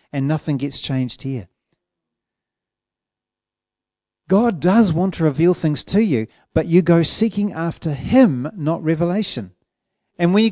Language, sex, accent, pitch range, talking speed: English, male, Australian, 120-170 Hz, 135 wpm